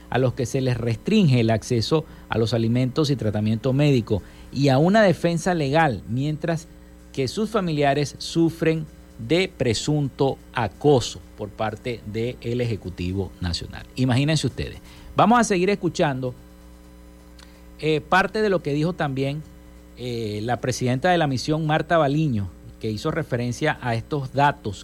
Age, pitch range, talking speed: 50-69, 110-155 Hz, 145 wpm